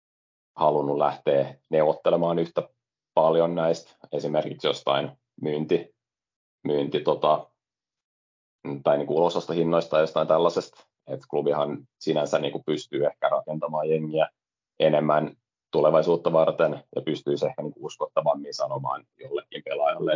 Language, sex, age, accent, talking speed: Finnish, male, 30-49, native, 115 wpm